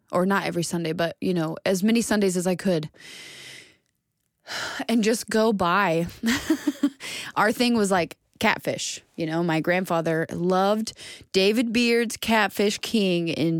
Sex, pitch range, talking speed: female, 165-215 Hz, 140 wpm